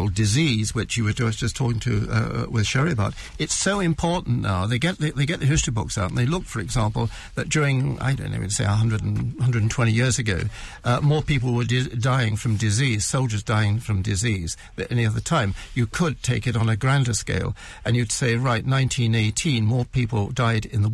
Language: English